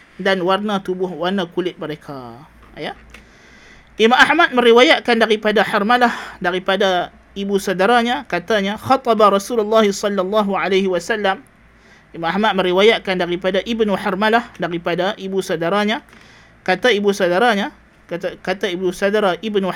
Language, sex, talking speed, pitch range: Malay, male, 115 wpm, 190-240 Hz